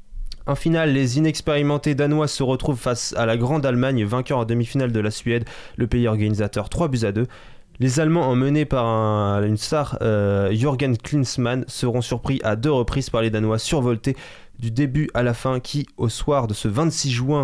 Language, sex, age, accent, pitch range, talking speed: French, male, 20-39, French, 110-140 Hz, 190 wpm